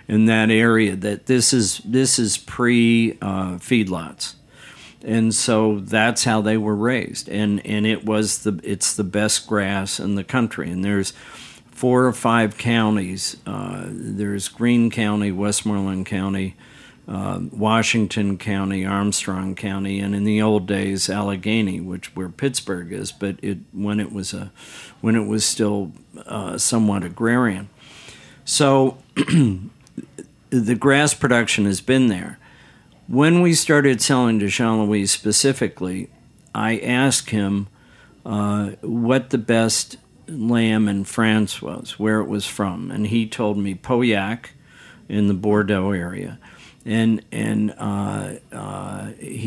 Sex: male